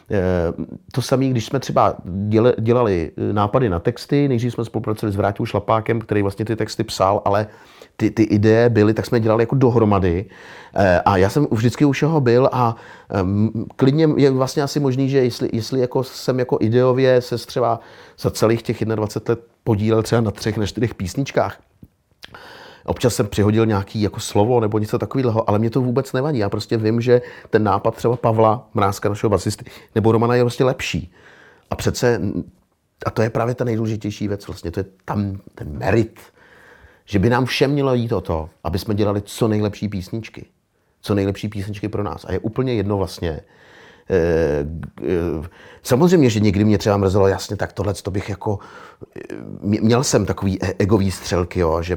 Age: 30-49